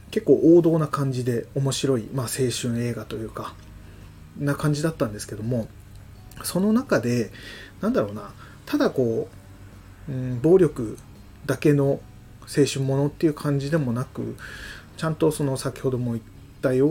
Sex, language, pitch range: male, Japanese, 110-140 Hz